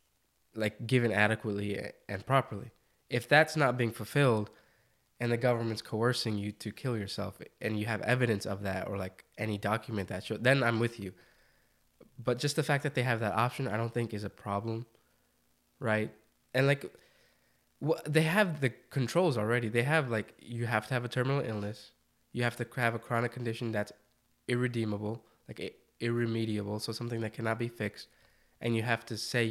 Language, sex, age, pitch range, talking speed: English, male, 20-39, 105-125 Hz, 180 wpm